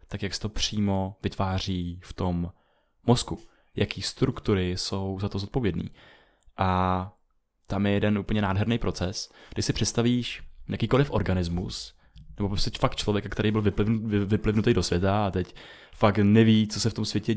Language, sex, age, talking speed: Czech, male, 20-39, 155 wpm